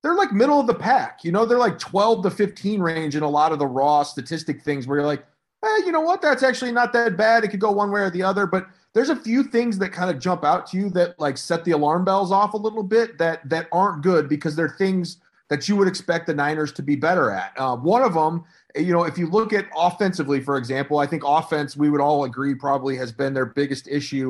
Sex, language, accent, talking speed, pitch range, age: male, English, American, 265 wpm, 150-205 Hz, 30-49